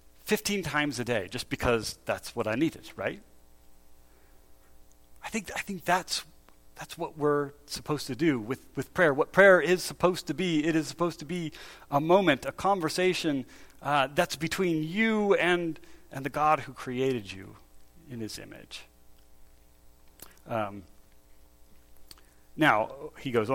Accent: American